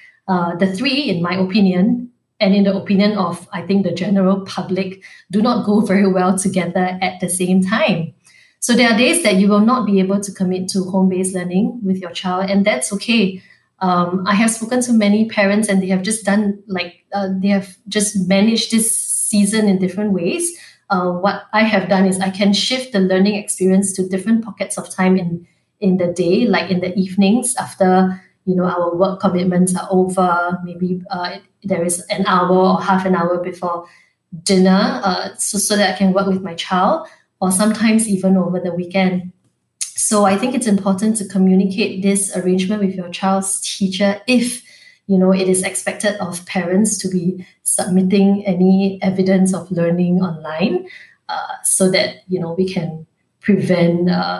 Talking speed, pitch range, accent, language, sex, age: 185 wpm, 185-200 Hz, Malaysian, English, female, 20-39